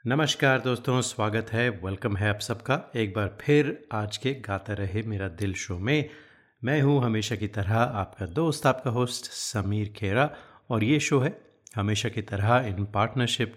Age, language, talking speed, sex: 30-49, Hindi, 175 wpm, male